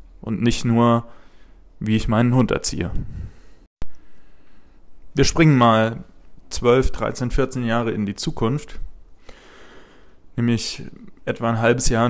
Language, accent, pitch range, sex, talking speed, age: German, German, 100-115 Hz, male, 115 wpm, 20-39